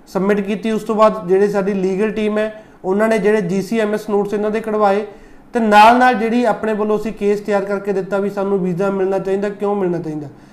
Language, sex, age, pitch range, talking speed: Punjabi, male, 30-49, 195-220 Hz, 210 wpm